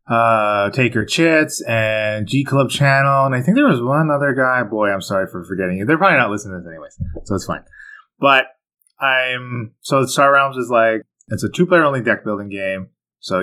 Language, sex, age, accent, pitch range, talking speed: English, male, 20-39, American, 100-125 Hz, 205 wpm